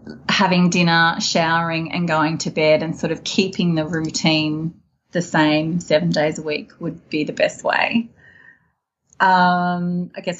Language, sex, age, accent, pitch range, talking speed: English, female, 30-49, Australian, 170-205 Hz, 155 wpm